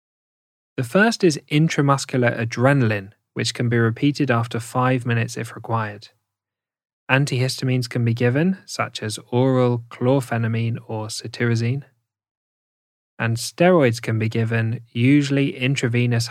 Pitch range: 110-135 Hz